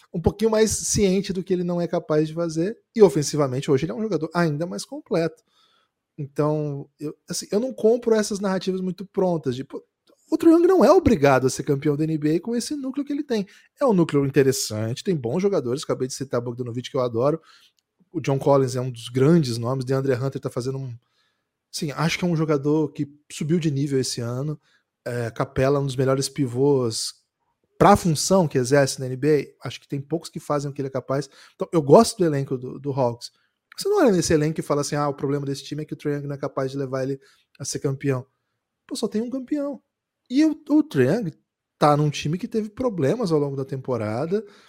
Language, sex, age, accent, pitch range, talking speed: Portuguese, male, 20-39, Brazilian, 135-190 Hz, 220 wpm